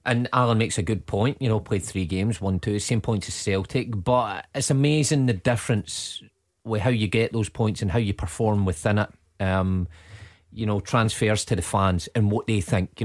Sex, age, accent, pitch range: male, 30-49, British, 100-115 Hz